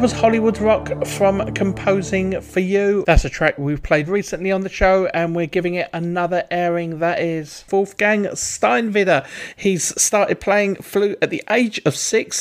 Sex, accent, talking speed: male, British, 170 wpm